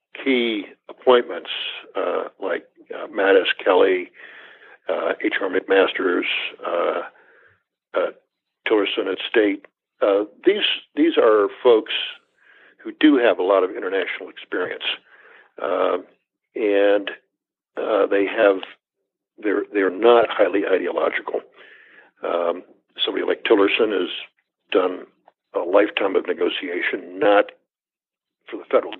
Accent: American